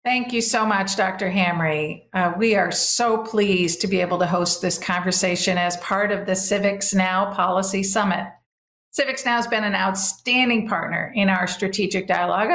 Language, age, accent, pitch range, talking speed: English, 50-69, American, 180-215 Hz, 175 wpm